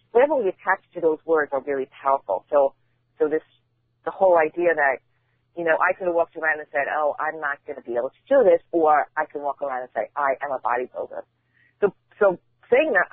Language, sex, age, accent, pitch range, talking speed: English, female, 40-59, American, 135-180 Hz, 230 wpm